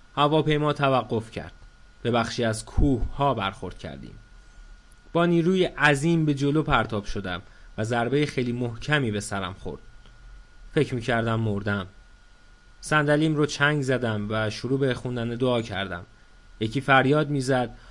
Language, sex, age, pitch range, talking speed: Persian, male, 30-49, 105-150 Hz, 130 wpm